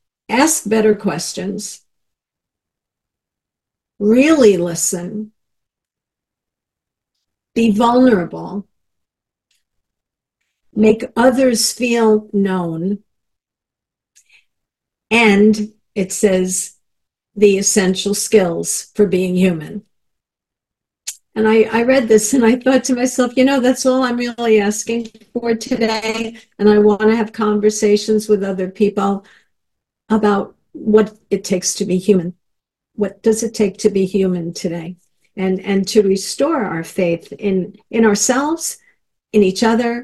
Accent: American